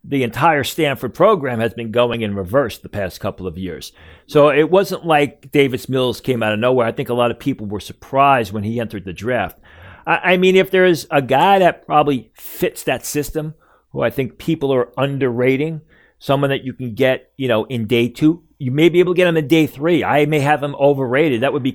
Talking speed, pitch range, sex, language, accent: 230 wpm, 120-150 Hz, male, English, American